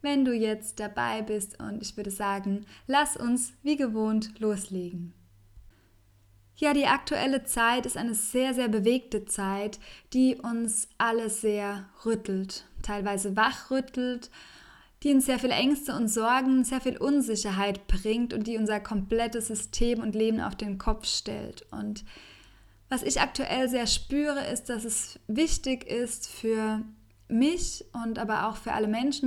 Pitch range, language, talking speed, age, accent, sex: 210-245 Hz, German, 150 wpm, 10-29, German, female